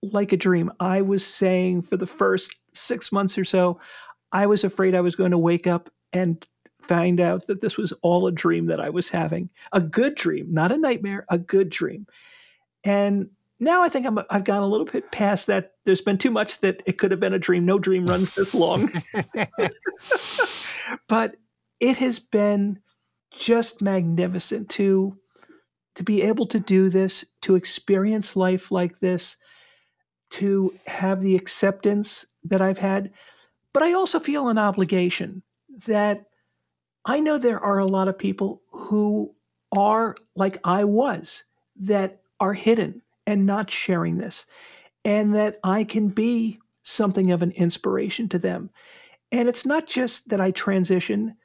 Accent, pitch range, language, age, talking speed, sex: American, 185-225 Hz, English, 40-59, 165 wpm, male